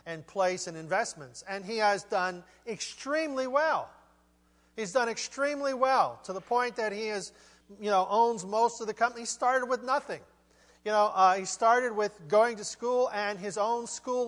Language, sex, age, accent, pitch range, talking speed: English, male, 40-59, American, 190-250 Hz, 185 wpm